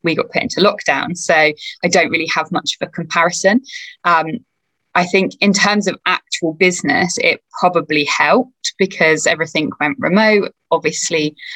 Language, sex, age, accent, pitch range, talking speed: English, female, 20-39, British, 160-200 Hz, 155 wpm